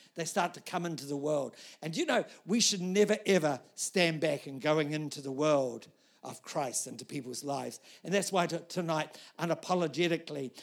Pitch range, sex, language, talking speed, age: 155-200 Hz, male, English, 180 wpm, 60-79